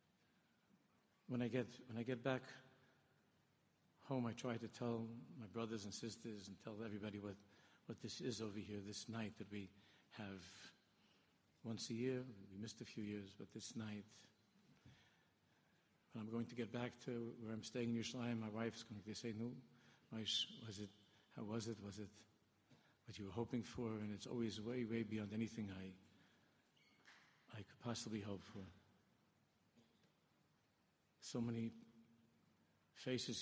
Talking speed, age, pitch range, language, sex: 155 wpm, 50-69, 105-120 Hz, English, male